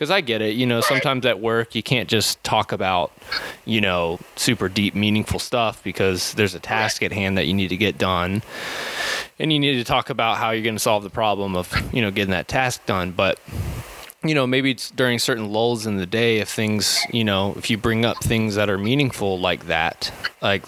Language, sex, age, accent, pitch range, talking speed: English, male, 20-39, American, 100-120 Hz, 225 wpm